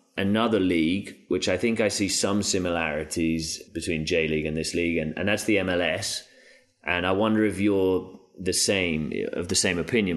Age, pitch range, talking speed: 30-49, 80-100 Hz, 185 wpm